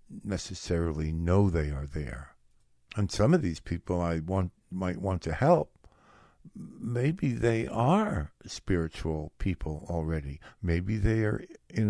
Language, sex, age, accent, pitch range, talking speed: English, male, 60-79, American, 80-105 Hz, 130 wpm